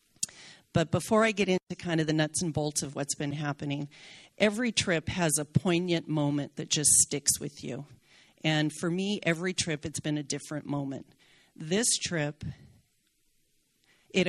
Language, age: English, 40-59